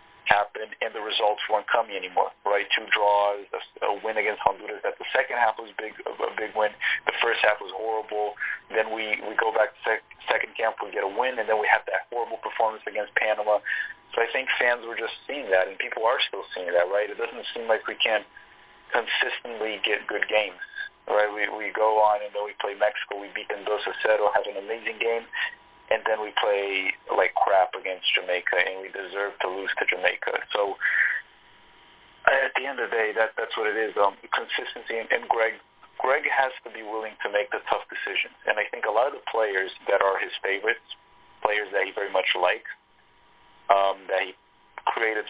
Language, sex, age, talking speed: English, male, 40-59, 210 wpm